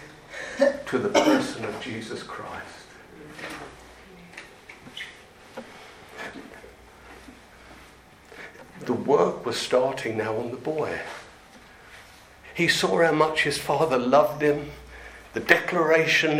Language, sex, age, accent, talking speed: English, male, 50-69, British, 90 wpm